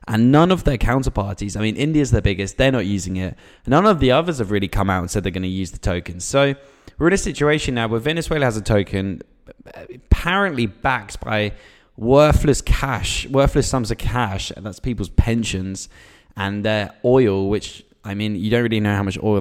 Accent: British